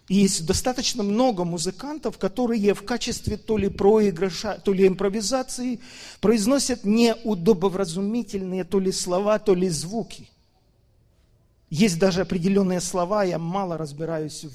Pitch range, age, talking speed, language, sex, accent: 170-225 Hz, 40-59, 115 wpm, Russian, male, native